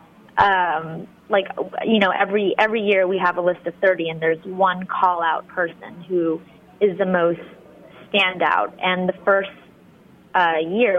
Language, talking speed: English, 165 wpm